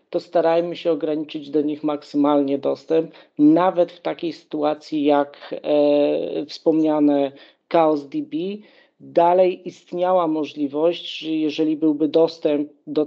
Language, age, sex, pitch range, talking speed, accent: Polish, 40-59, male, 150-170 Hz, 115 wpm, native